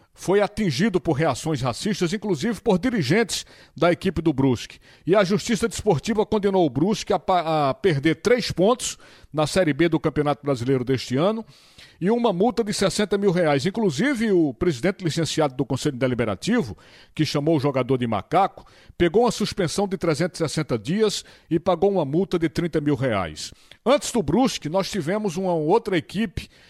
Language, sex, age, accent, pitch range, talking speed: Portuguese, male, 60-79, Brazilian, 145-195 Hz, 170 wpm